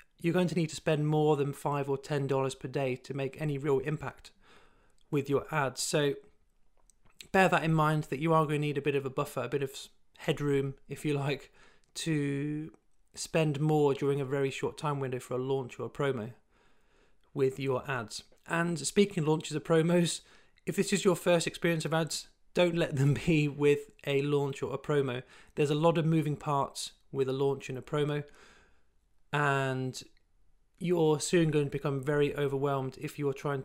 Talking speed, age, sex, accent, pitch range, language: 195 wpm, 40-59, male, British, 135-160 Hz, English